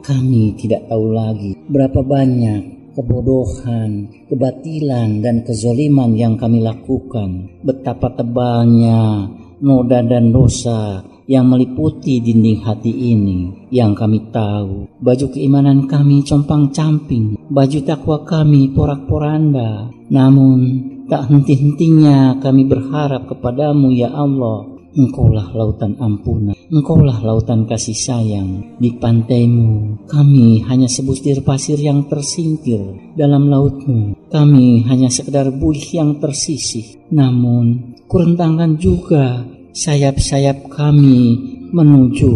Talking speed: 105 wpm